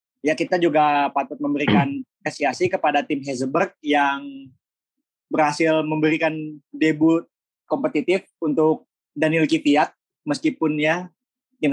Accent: native